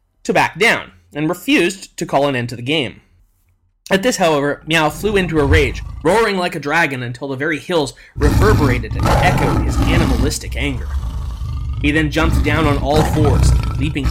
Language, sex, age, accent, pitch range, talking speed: English, male, 20-39, American, 125-165 Hz, 180 wpm